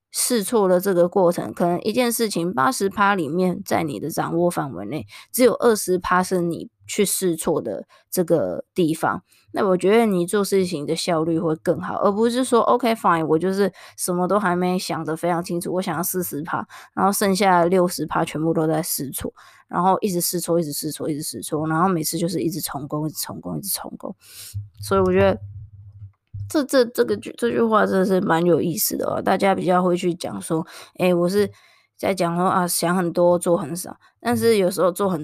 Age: 20-39